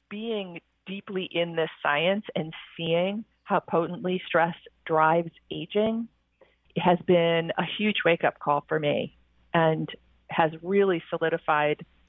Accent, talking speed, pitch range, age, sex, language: American, 130 wpm, 155-195 Hz, 40-59, female, English